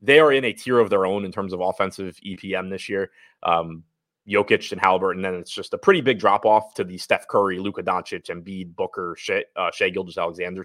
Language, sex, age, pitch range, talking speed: English, male, 20-39, 95-115 Hz, 220 wpm